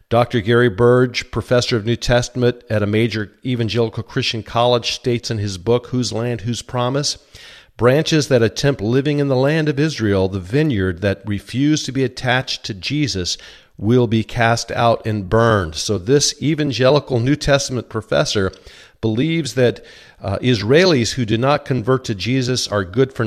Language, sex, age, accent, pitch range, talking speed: English, male, 50-69, American, 105-130 Hz, 165 wpm